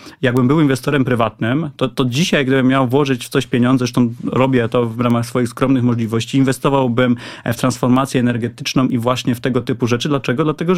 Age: 30-49